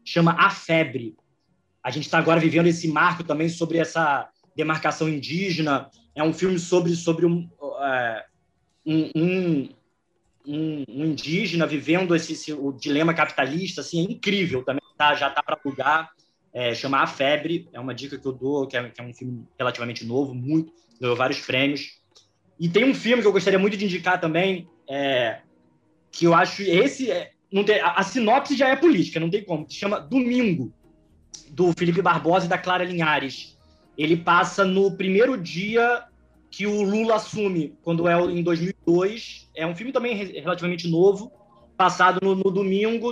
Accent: Brazilian